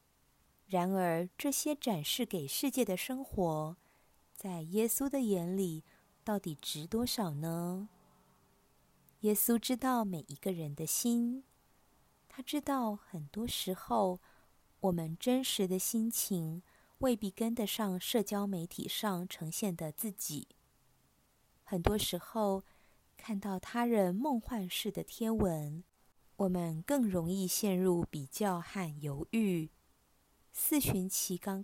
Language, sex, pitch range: Chinese, female, 170-230 Hz